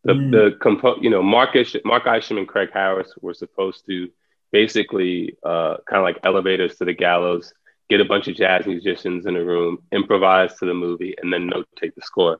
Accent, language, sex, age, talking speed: American, English, male, 20-39, 205 wpm